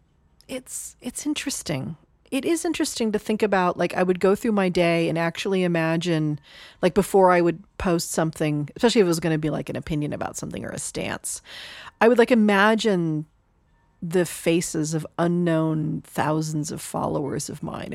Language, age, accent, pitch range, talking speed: English, 40-59, American, 160-230 Hz, 175 wpm